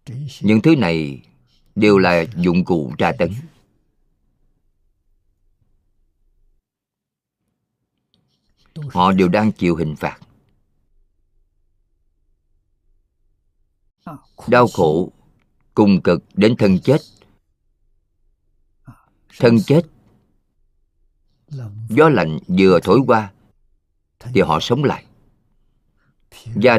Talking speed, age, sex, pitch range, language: 75 wpm, 50-69, male, 80-110 Hz, Vietnamese